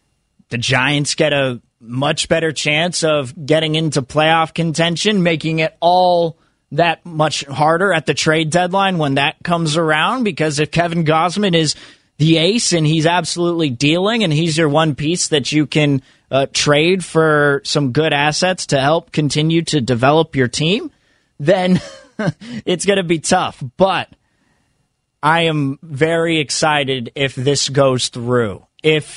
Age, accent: 20-39, American